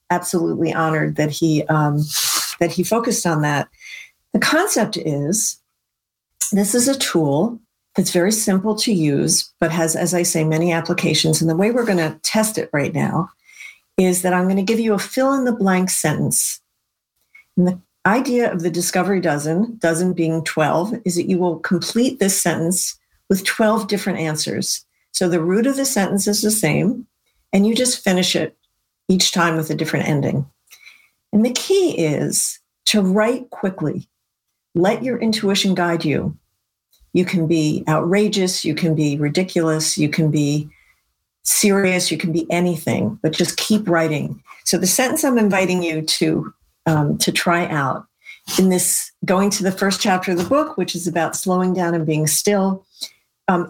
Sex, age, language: female, 50-69, English